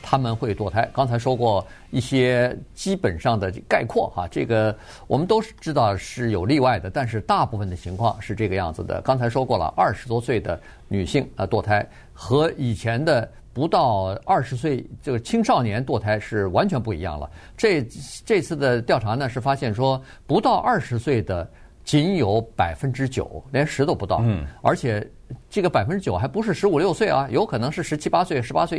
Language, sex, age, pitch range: Chinese, male, 50-69, 110-155 Hz